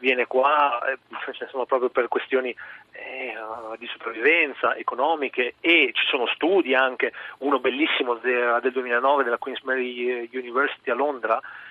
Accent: native